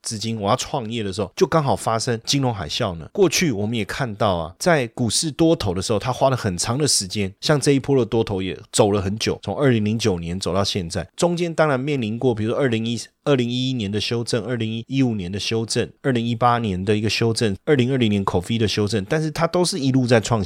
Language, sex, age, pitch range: Chinese, male, 30-49, 100-140 Hz